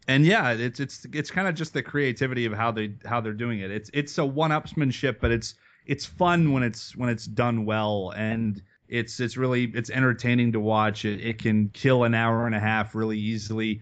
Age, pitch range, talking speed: 30-49, 110-130 Hz, 215 wpm